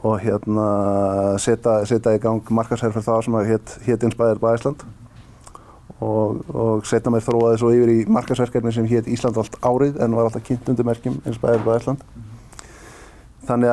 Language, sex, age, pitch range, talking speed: English, male, 20-39, 110-120 Hz, 155 wpm